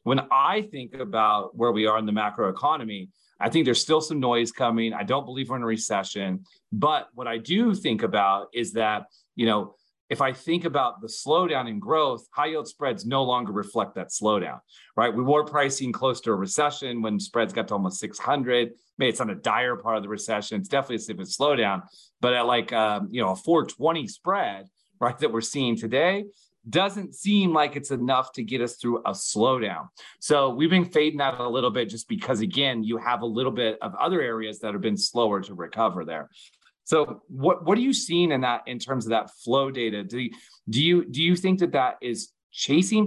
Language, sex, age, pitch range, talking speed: English, male, 30-49, 115-155 Hz, 220 wpm